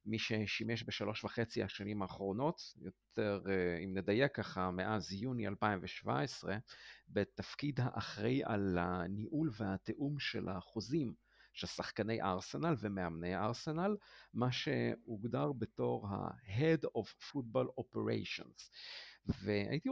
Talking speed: 100 wpm